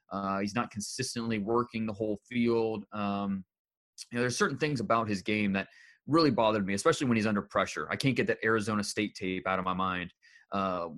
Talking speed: 210 wpm